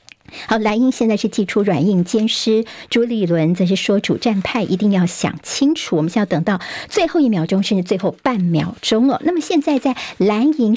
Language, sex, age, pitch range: Chinese, male, 50-69, 180-245 Hz